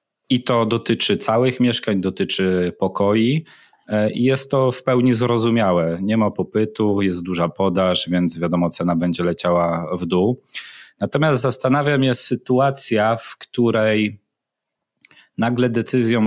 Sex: male